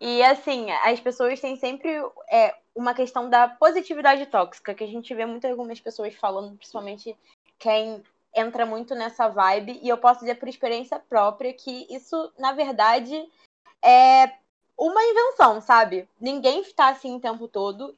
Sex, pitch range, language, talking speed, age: female, 225-290 Hz, Portuguese, 155 wpm, 20-39